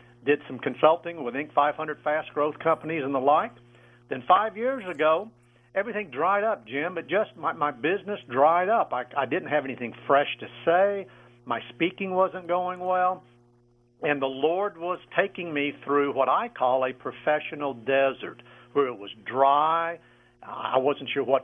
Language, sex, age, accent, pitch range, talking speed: English, male, 50-69, American, 120-170 Hz, 170 wpm